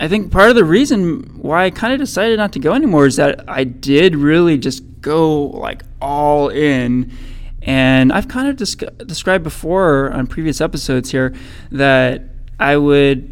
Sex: male